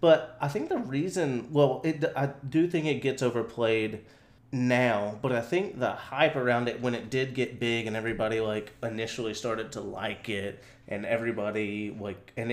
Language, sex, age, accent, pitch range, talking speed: English, male, 30-49, American, 115-135 Hz, 175 wpm